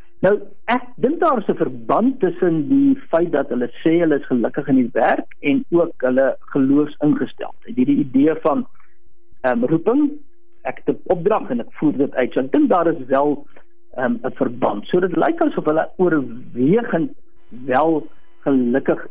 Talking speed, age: 180 wpm, 60-79